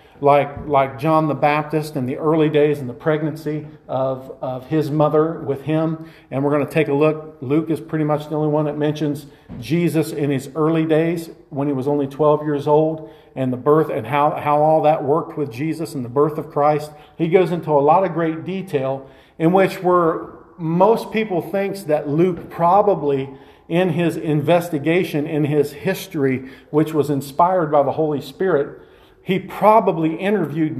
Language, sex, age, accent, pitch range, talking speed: English, male, 50-69, American, 140-165 Hz, 185 wpm